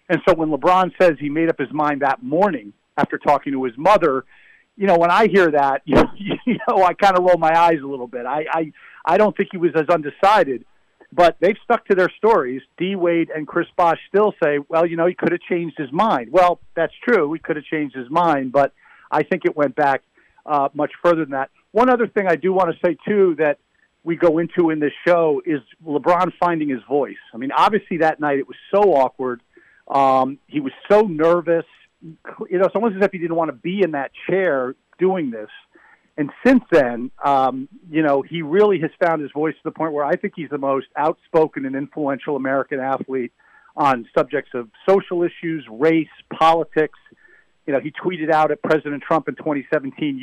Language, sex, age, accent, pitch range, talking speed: English, male, 50-69, American, 145-180 Hz, 215 wpm